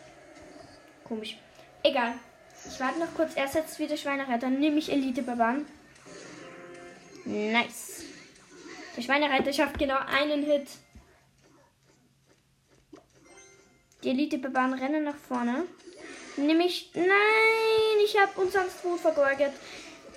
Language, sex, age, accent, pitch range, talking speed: German, female, 10-29, German, 245-330 Hz, 105 wpm